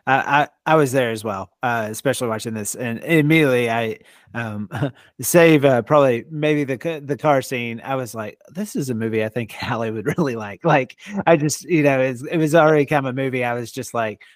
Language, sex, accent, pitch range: English, male, American, 115-145 Hz